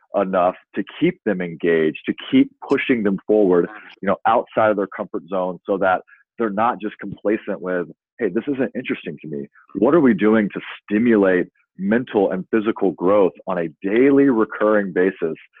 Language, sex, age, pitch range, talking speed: English, male, 30-49, 90-105 Hz, 175 wpm